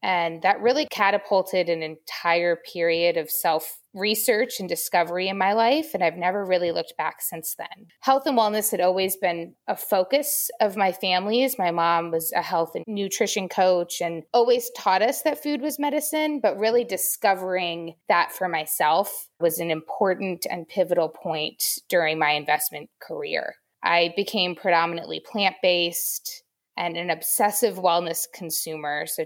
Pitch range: 165-195 Hz